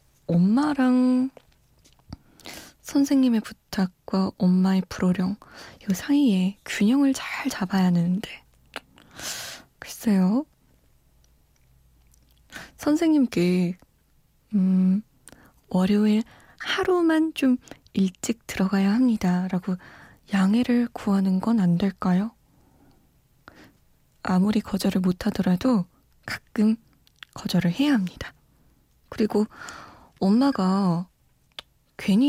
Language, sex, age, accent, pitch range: Korean, female, 20-39, native, 185-240 Hz